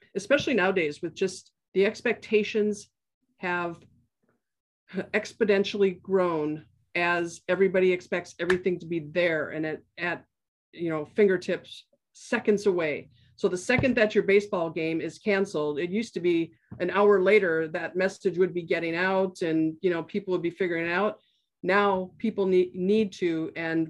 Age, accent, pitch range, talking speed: 50-69, American, 160-195 Hz, 155 wpm